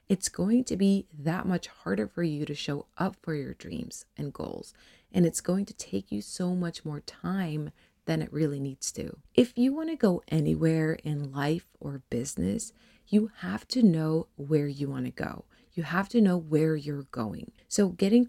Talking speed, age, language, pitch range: 195 wpm, 30-49, English, 150-210 Hz